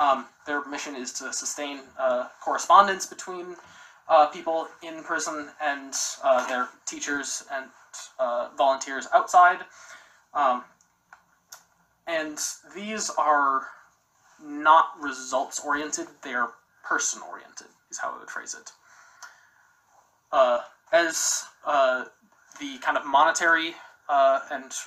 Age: 20-39